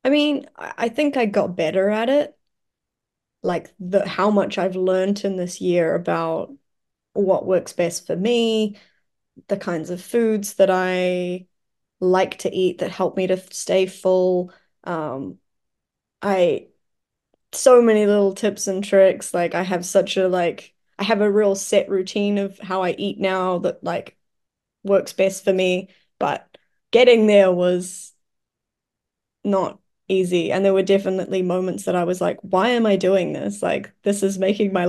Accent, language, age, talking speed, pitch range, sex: Australian, English, 10-29, 165 wpm, 180-205 Hz, female